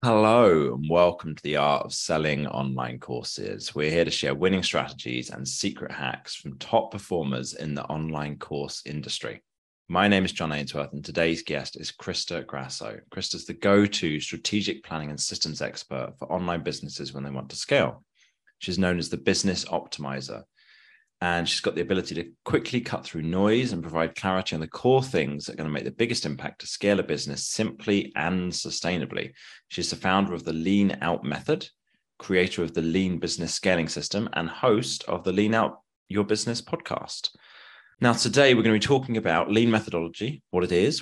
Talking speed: 190 wpm